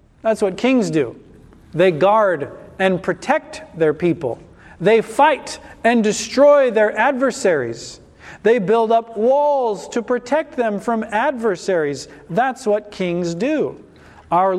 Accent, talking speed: American, 125 wpm